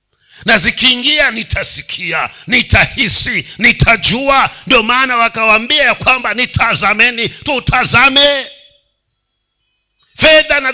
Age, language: 50-69, Swahili